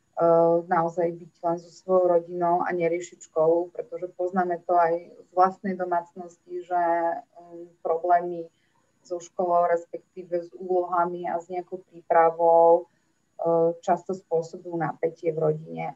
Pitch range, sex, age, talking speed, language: 165-180 Hz, female, 30-49, 120 wpm, Slovak